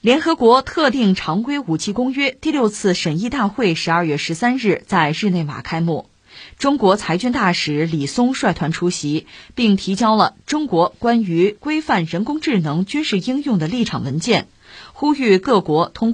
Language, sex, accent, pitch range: Chinese, female, native, 165-240 Hz